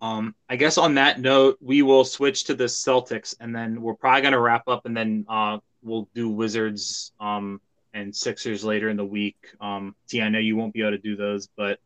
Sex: male